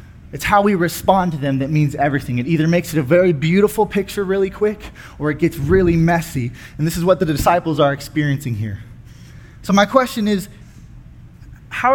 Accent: American